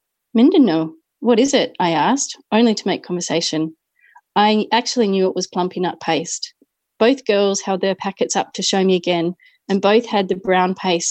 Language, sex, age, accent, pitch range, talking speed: English, female, 30-49, Australian, 180-225 Hz, 185 wpm